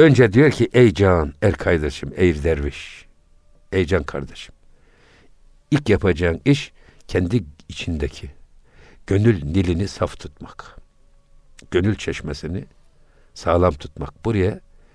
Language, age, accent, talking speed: Turkish, 60-79, native, 105 wpm